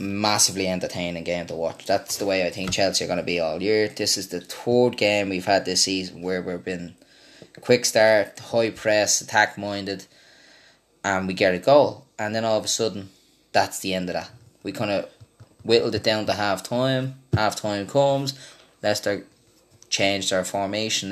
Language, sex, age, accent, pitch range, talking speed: English, male, 10-29, Irish, 100-115 Hz, 190 wpm